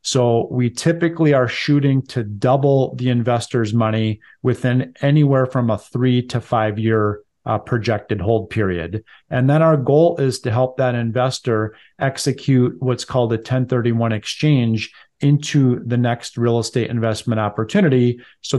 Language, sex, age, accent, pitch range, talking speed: English, male, 40-59, American, 115-130 Hz, 145 wpm